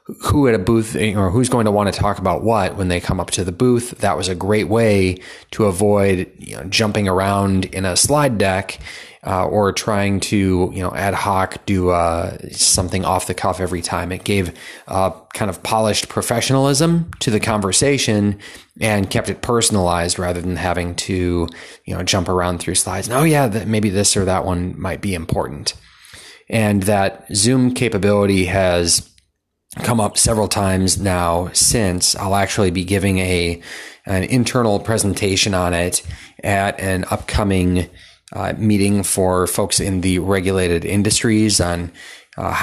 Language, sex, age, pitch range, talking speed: English, male, 30-49, 90-105 Hz, 170 wpm